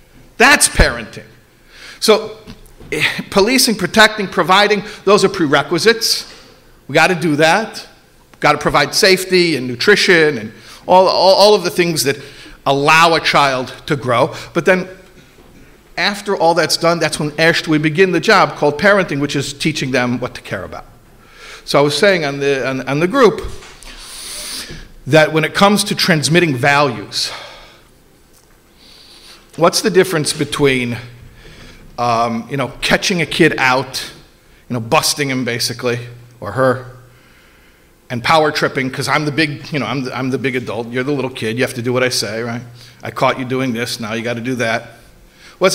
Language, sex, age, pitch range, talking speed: English, male, 50-69, 125-170 Hz, 170 wpm